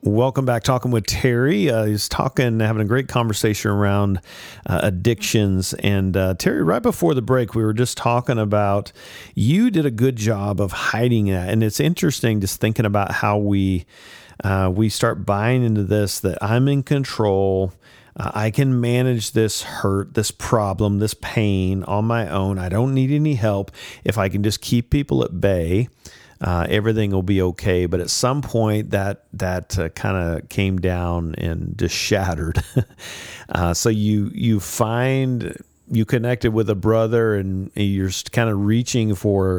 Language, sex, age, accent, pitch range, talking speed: English, male, 40-59, American, 95-115 Hz, 170 wpm